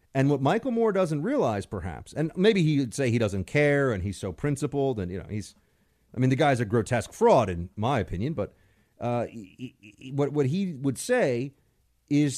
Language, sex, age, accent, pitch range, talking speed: English, male, 40-59, American, 100-140 Hz, 210 wpm